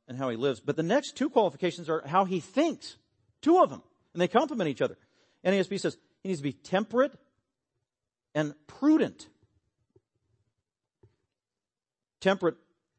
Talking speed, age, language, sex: 145 wpm, 50-69, English, male